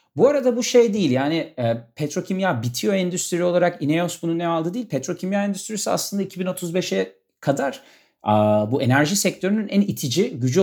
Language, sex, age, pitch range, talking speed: Turkish, male, 40-59, 125-200 Hz, 160 wpm